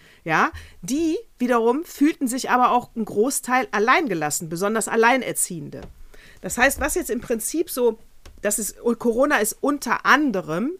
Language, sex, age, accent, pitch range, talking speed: German, female, 40-59, German, 210-265 Hz, 140 wpm